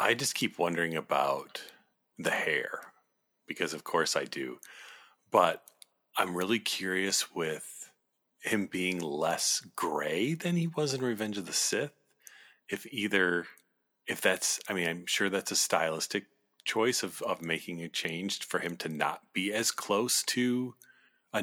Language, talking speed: English, 155 wpm